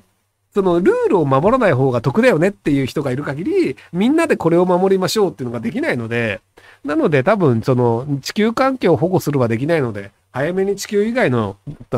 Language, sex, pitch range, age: Japanese, male, 125-200 Hz, 40-59